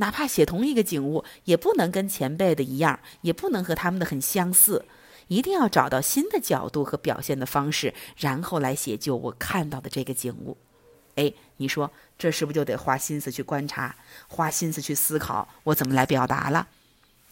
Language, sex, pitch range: Chinese, female, 140-230 Hz